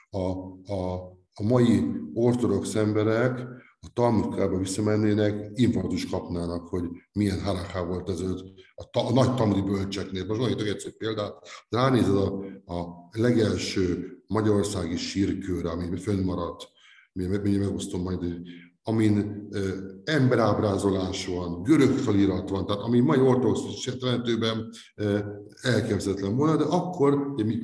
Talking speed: 120 wpm